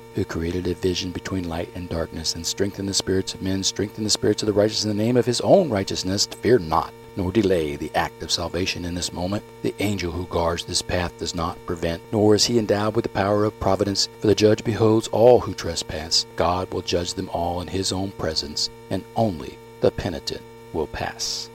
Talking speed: 220 wpm